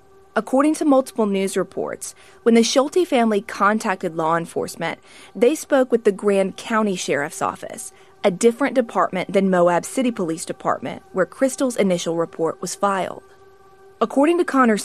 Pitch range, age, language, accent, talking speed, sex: 185-255 Hz, 30-49, English, American, 150 wpm, female